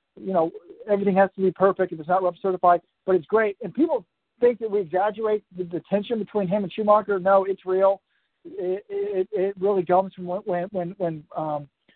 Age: 50-69